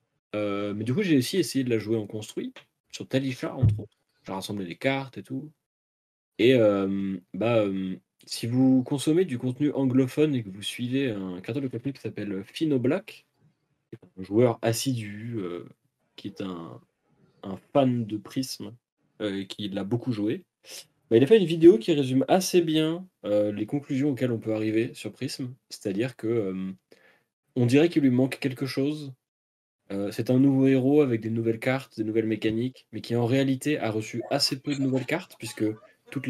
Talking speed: 190 wpm